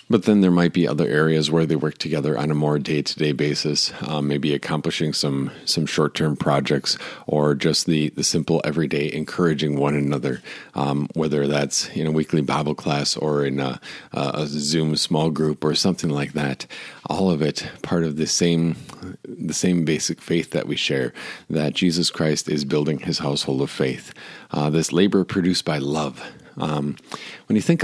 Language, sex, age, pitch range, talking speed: English, male, 40-59, 75-85 Hz, 180 wpm